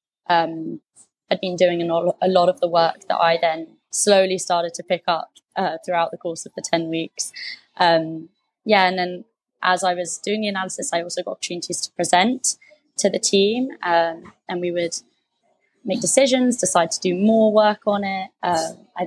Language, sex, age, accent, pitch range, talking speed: English, female, 20-39, British, 170-195 Hz, 185 wpm